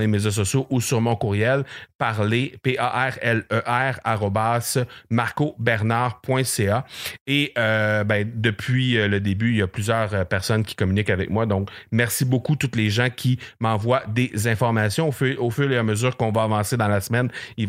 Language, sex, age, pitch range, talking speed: French, male, 30-49, 105-130 Hz, 170 wpm